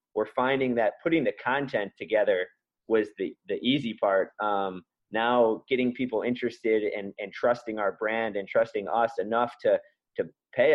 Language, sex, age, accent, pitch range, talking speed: English, male, 20-39, American, 105-130 Hz, 160 wpm